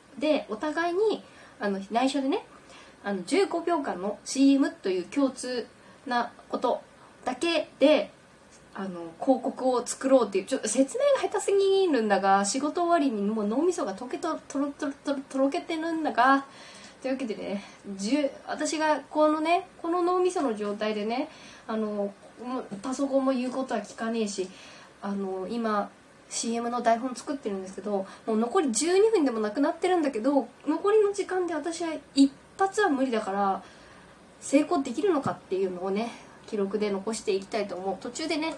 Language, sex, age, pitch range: Japanese, female, 20-39, 220-310 Hz